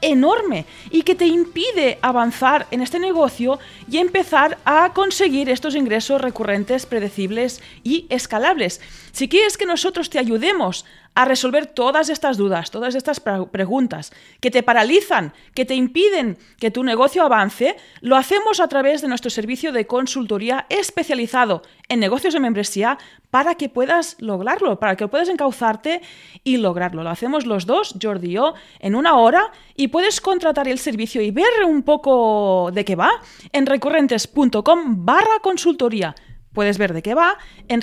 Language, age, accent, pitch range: Spanish, 30-49, Spanish, 220-325 Hz